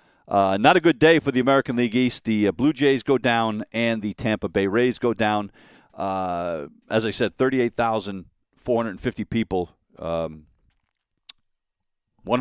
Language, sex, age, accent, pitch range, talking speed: English, male, 50-69, American, 100-135 Hz, 170 wpm